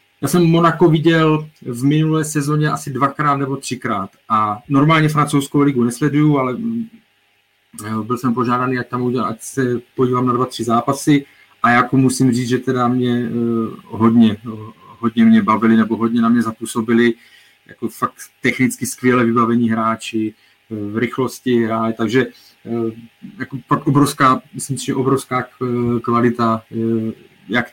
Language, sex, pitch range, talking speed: Czech, male, 115-140 Hz, 140 wpm